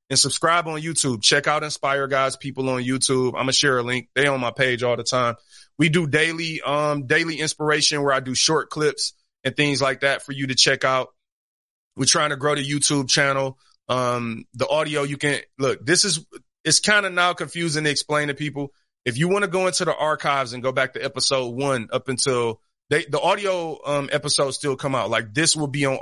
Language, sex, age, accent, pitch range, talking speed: English, male, 30-49, American, 125-145 Hz, 220 wpm